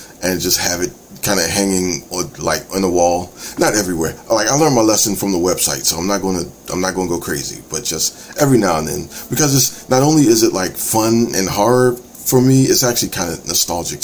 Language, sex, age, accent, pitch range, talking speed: English, male, 30-49, American, 90-125 Hz, 220 wpm